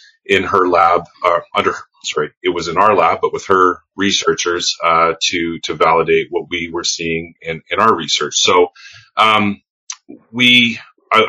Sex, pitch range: male, 85-130 Hz